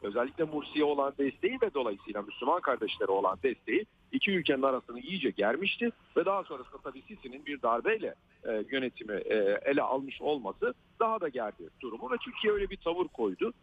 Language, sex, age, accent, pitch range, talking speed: Turkish, male, 50-69, native, 145-240 Hz, 155 wpm